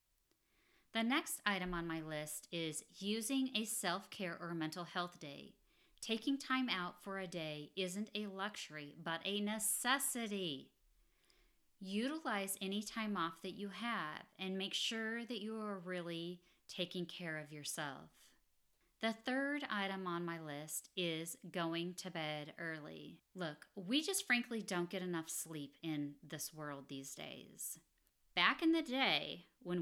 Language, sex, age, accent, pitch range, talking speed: English, female, 40-59, American, 160-215 Hz, 145 wpm